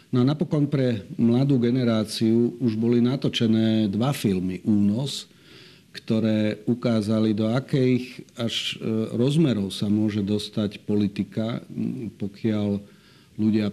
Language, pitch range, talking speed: Slovak, 105-115 Hz, 100 wpm